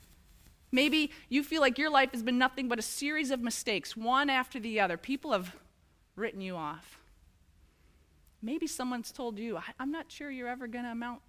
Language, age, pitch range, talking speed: English, 30-49, 170-270 Hz, 185 wpm